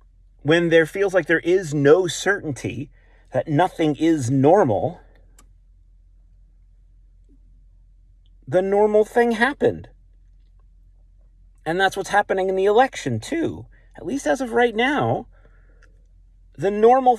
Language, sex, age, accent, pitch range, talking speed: English, male, 40-59, American, 100-165 Hz, 110 wpm